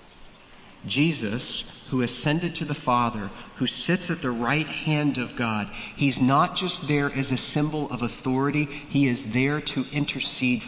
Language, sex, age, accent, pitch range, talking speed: English, male, 40-59, American, 120-155 Hz, 155 wpm